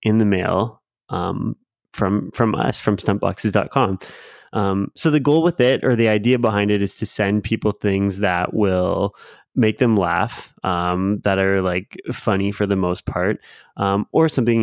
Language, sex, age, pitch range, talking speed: English, male, 20-39, 100-120 Hz, 170 wpm